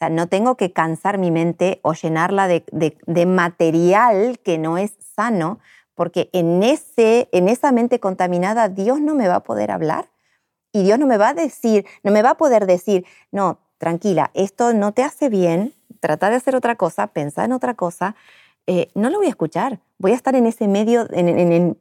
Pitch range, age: 165-215 Hz, 40-59